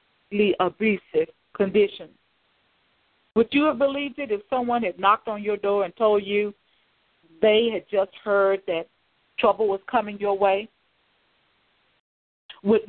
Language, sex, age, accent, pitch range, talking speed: English, female, 50-69, American, 195-245 Hz, 130 wpm